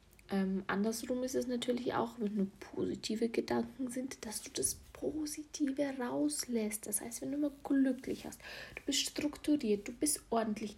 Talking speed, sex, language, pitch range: 160 wpm, female, German, 210-265 Hz